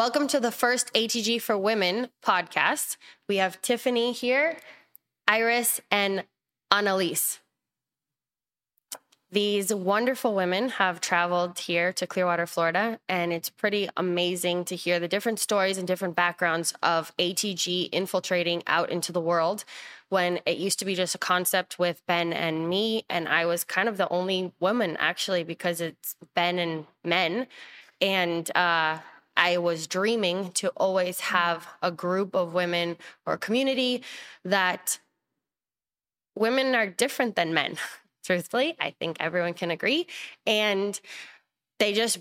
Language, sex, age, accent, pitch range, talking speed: English, female, 20-39, American, 175-220 Hz, 140 wpm